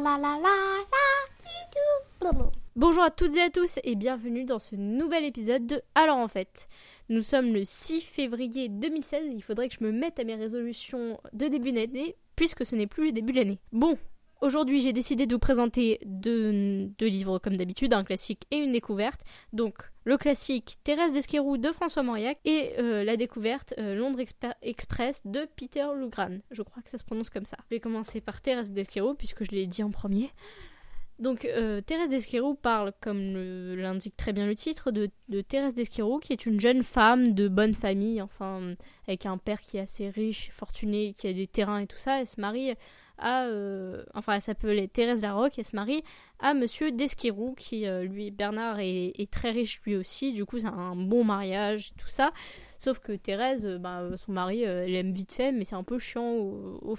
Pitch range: 205-265 Hz